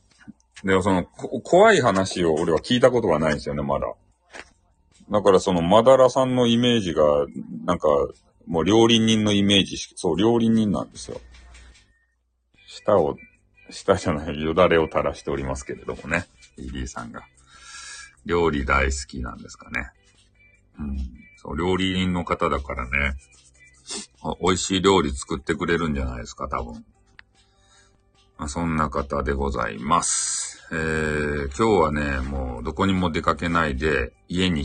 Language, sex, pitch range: Japanese, male, 70-95 Hz